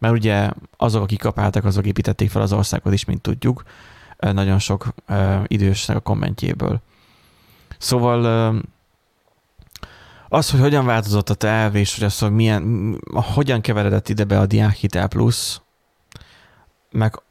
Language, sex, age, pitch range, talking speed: Hungarian, male, 20-39, 100-115 Hz, 135 wpm